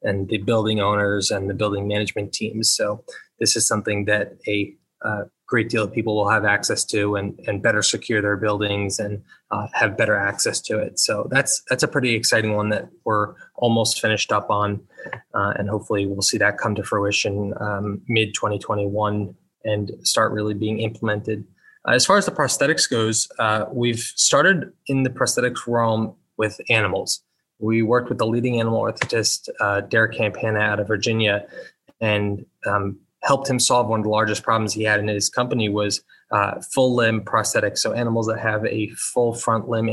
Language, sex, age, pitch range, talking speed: English, male, 20-39, 105-115 Hz, 185 wpm